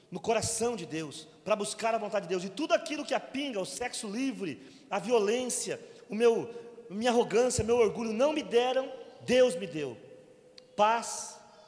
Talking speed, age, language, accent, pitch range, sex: 170 wpm, 30-49, Portuguese, Brazilian, 195-260 Hz, male